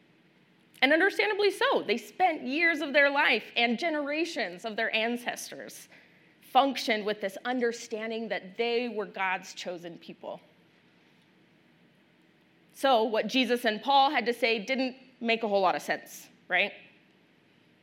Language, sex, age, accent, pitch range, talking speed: English, female, 30-49, American, 210-265 Hz, 135 wpm